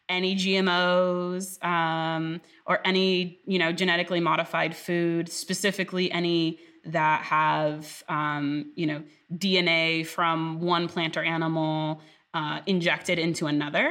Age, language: 20-39, English